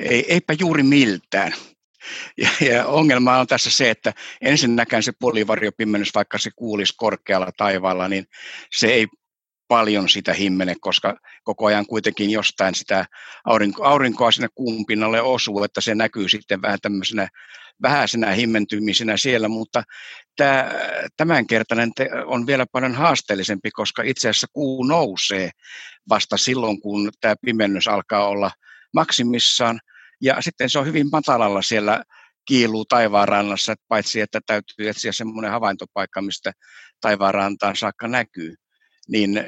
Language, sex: Finnish, male